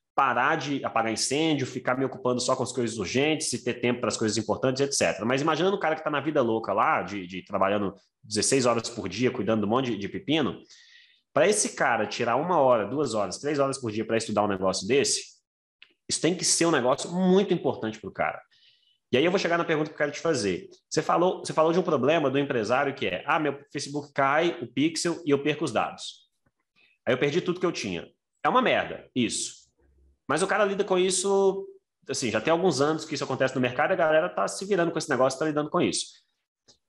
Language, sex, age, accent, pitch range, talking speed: Portuguese, male, 20-39, Brazilian, 120-170 Hz, 240 wpm